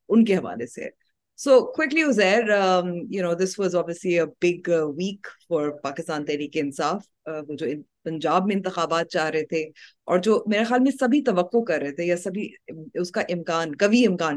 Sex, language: female, Urdu